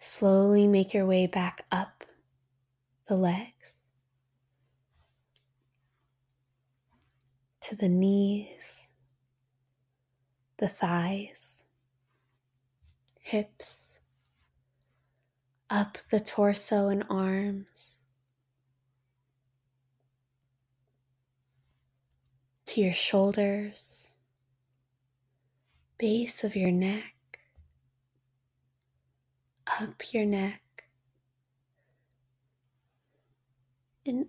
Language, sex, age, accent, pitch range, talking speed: English, female, 20-39, American, 130-200 Hz, 55 wpm